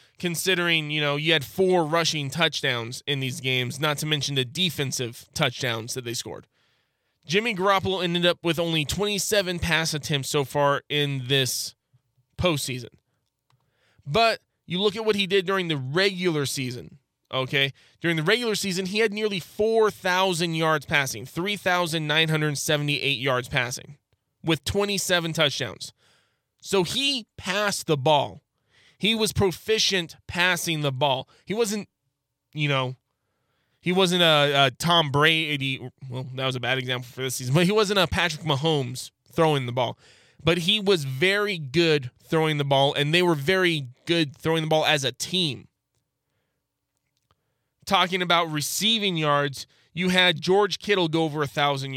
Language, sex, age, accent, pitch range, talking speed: English, male, 20-39, American, 135-180 Hz, 150 wpm